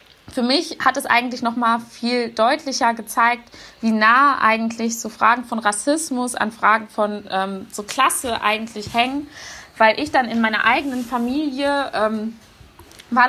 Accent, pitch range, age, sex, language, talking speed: German, 220-265 Hz, 20-39, female, German, 155 wpm